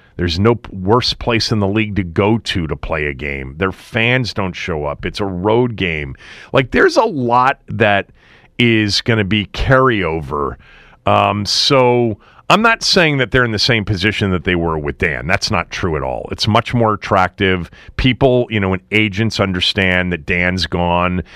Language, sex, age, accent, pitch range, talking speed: English, male, 40-59, American, 90-115 Hz, 190 wpm